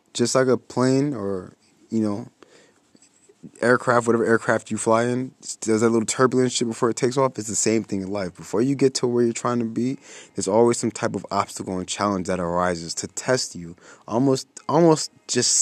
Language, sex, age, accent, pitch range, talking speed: English, male, 20-39, American, 100-125 Hz, 205 wpm